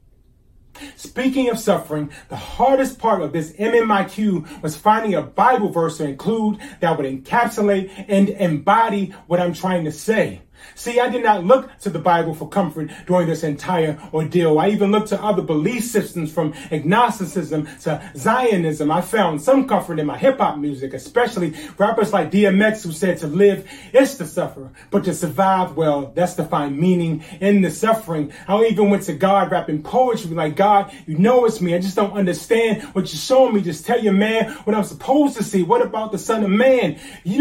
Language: English